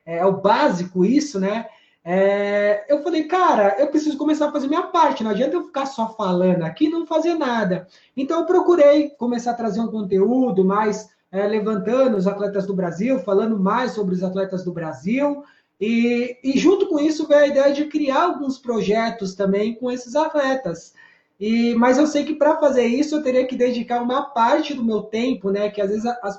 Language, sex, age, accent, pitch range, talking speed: Portuguese, male, 20-39, Brazilian, 205-295 Hz, 190 wpm